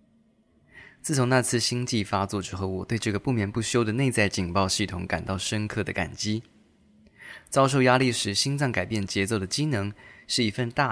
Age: 20-39